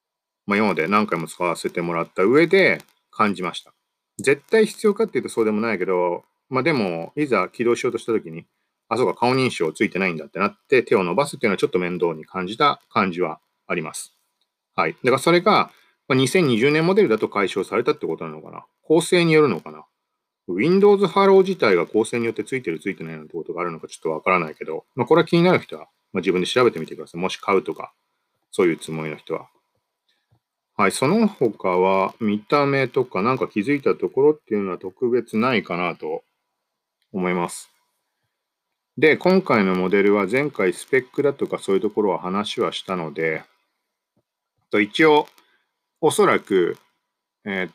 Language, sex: Japanese, male